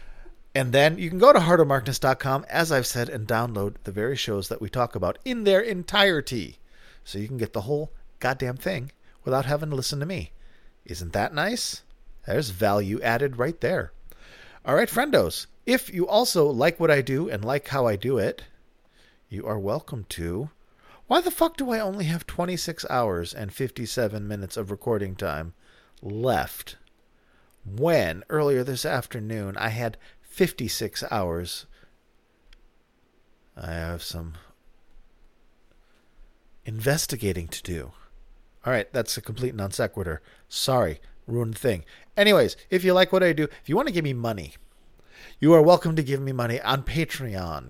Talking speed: 160 wpm